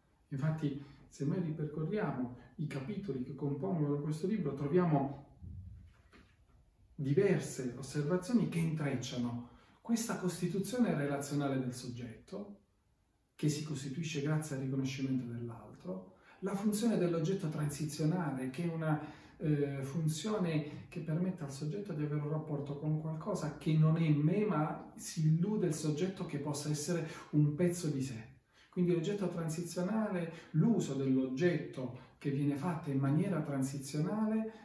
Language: Italian